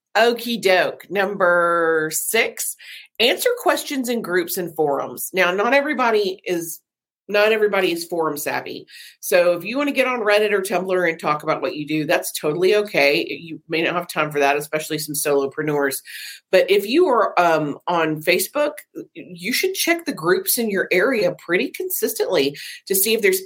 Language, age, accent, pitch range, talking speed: English, 40-59, American, 160-210 Hz, 175 wpm